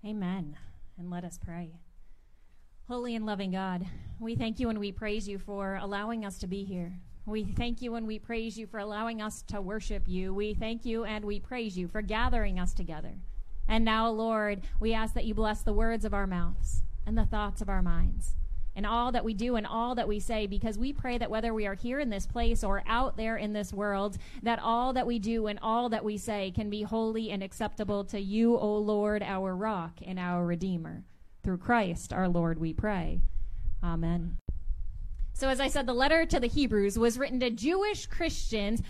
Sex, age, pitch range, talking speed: female, 30-49, 205-280 Hz, 210 wpm